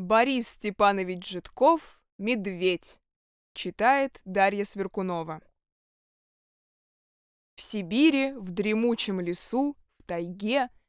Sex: female